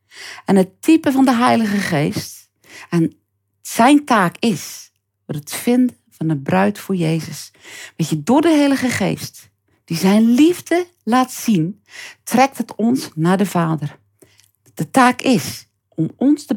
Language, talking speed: Dutch, 150 wpm